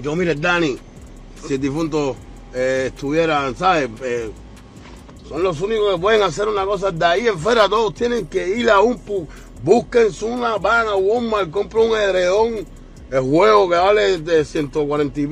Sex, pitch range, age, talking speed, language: male, 135-180 Hz, 30-49, 170 wpm, Spanish